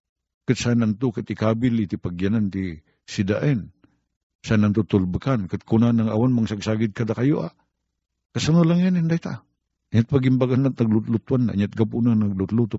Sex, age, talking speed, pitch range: male, 50-69, 150 wpm, 95-155 Hz